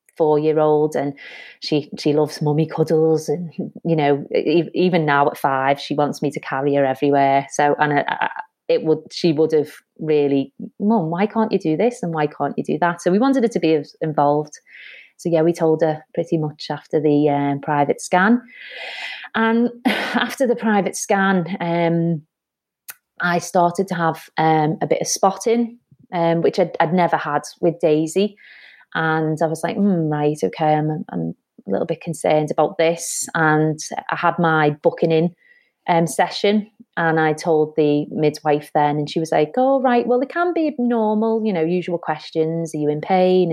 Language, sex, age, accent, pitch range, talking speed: English, female, 30-49, British, 155-215 Hz, 180 wpm